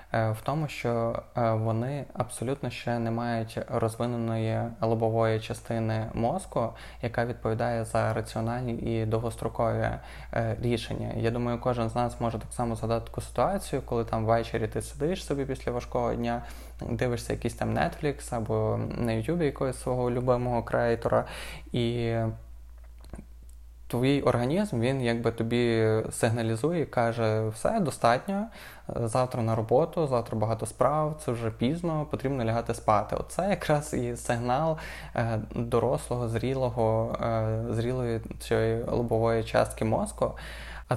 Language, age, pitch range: Ukrainian, 20-39, 115-130 Hz